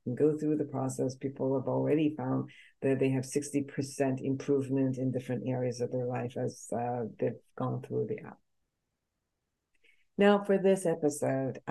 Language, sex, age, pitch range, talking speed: English, female, 60-79, 125-150 Hz, 160 wpm